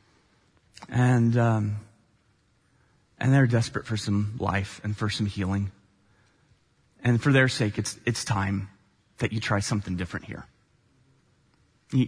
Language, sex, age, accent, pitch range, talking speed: English, male, 30-49, American, 105-125 Hz, 130 wpm